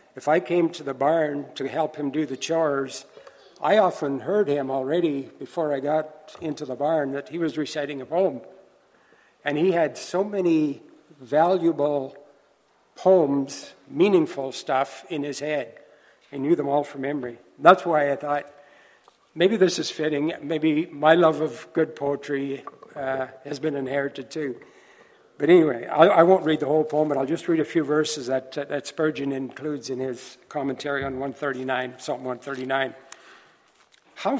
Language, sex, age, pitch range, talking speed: English, male, 60-79, 135-165 Hz, 165 wpm